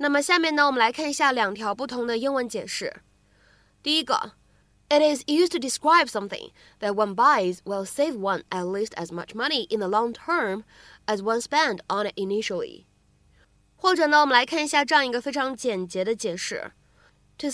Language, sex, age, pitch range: Chinese, female, 20-39, 210-305 Hz